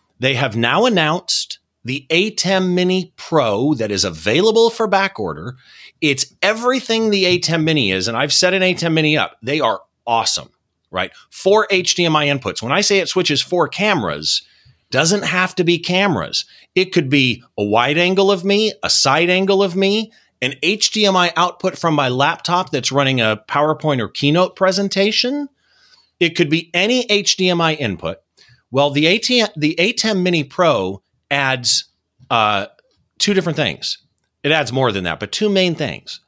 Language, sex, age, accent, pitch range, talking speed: English, male, 40-59, American, 140-195 Hz, 165 wpm